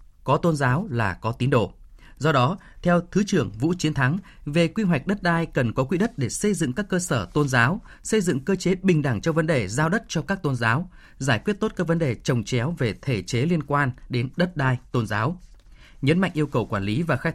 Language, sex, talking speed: Vietnamese, male, 255 wpm